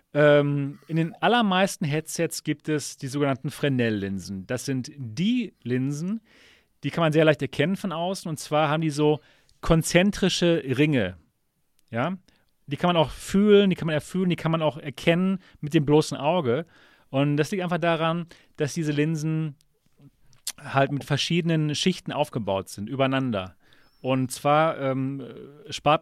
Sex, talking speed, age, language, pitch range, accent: male, 150 wpm, 40-59, German, 125-170 Hz, German